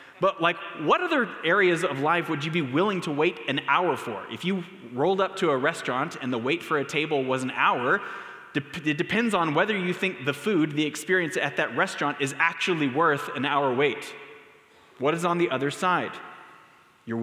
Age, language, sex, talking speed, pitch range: 20-39, English, male, 200 wpm, 140-180 Hz